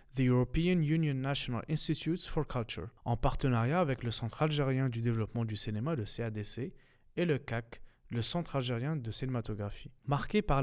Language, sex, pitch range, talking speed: Arabic, male, 120-160 Hz, 165 wpm